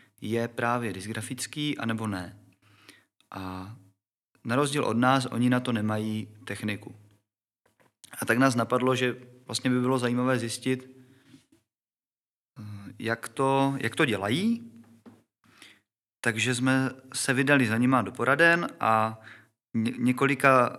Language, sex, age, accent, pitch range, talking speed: Czech, male, 30-49, native, 110-130 Hz, 115 wpm